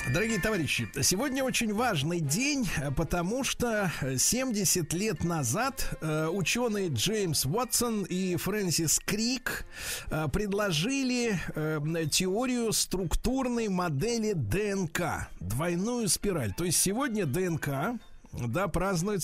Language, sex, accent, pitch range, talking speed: Russian, male, native, 140-205 Hz, 95 wpm